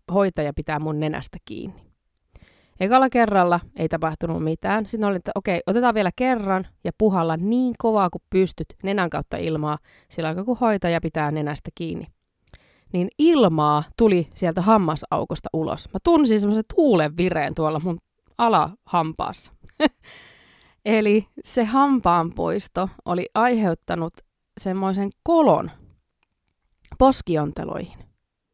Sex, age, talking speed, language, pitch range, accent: female, 20-39, 115 wpm, Finnish, 170-250 Hz, native